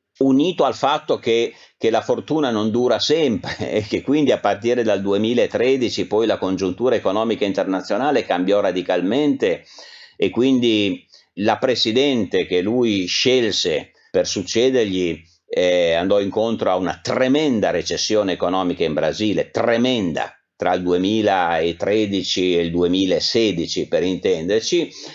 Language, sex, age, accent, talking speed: Italian, male, 50-69, native, 125 wpm